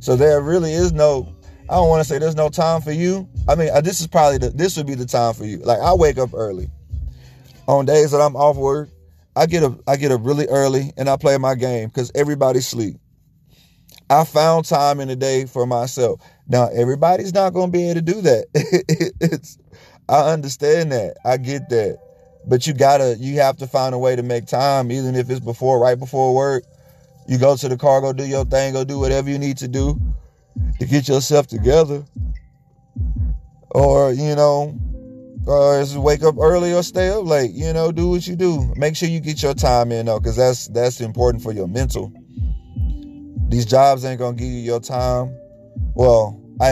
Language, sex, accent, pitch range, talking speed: English, male, American, 120-150 Hz, 210 wpm